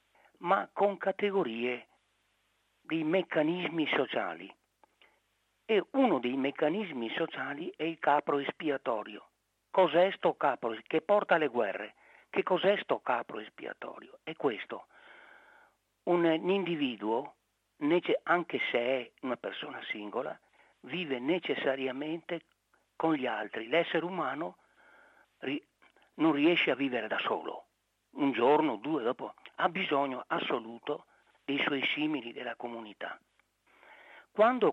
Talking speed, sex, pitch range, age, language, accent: 105 wpm, male, 130-190 Hz, 60-79, Italian, native